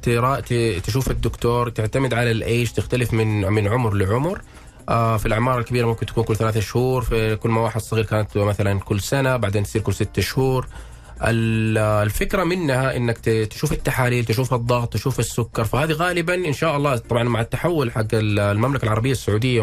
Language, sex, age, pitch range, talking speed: Arabic, male, 20-39, 110-130 Hz, 160 wpm